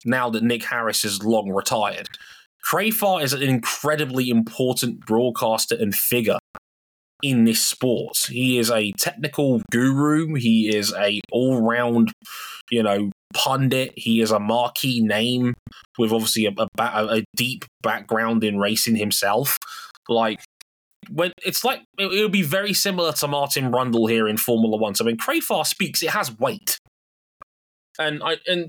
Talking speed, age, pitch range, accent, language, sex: 155 wpm, 20-39, 115-155 Hz, British, English, male